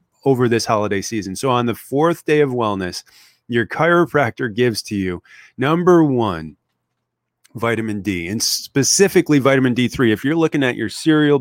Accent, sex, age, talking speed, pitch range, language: American, male, 30-49, 160 wpm, 105-140 Hz, English